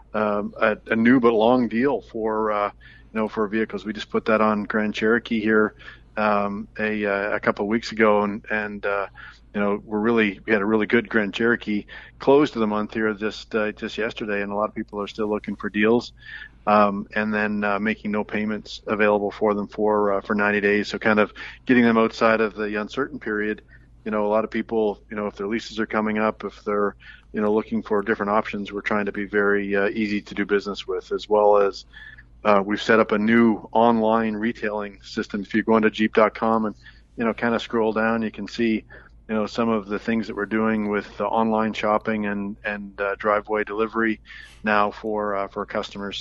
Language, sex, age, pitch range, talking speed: English, male, 40-59, 105-110 Hz, 220 wpm